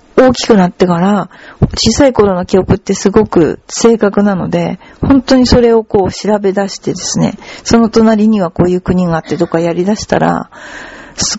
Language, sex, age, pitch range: Japanese, female, 40-59, 180-245 Hz